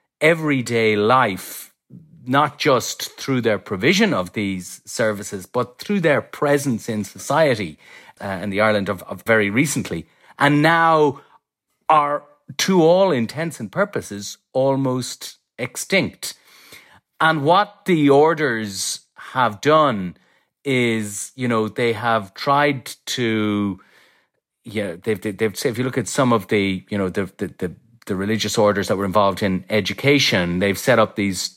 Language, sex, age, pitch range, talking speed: English, male, 40-59, 100-130 Hz, 145 wpm